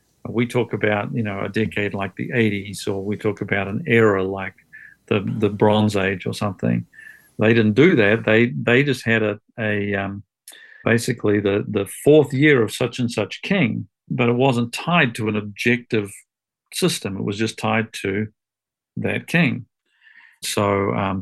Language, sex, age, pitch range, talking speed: English, male, 50-69, 105-125 Hz, 175 wpm